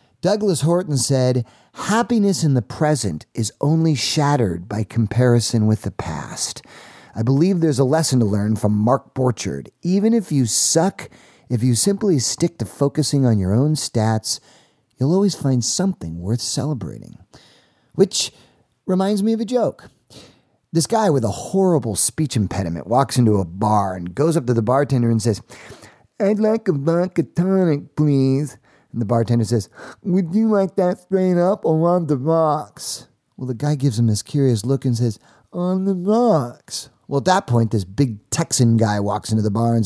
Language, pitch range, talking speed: English, 115-175 Hz, 175 wpm